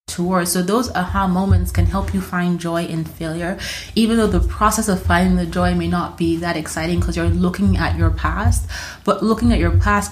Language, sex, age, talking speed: English, female, 20-39, 215 wpm